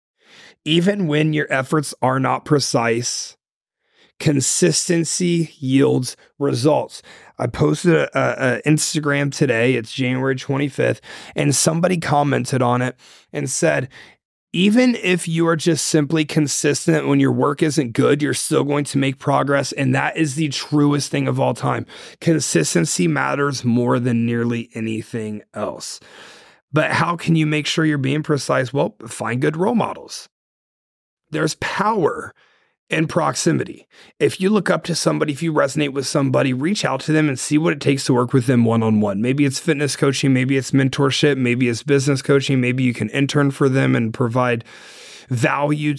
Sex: male